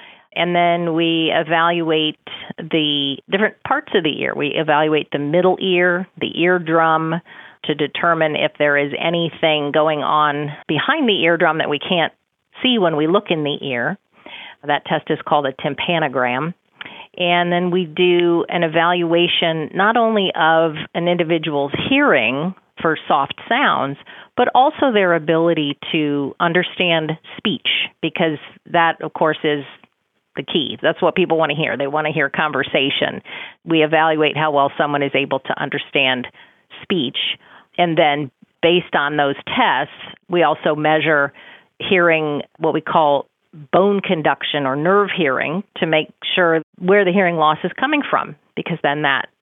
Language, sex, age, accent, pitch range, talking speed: English, female, 40-59, American, 150-180 Hz, 150 wpm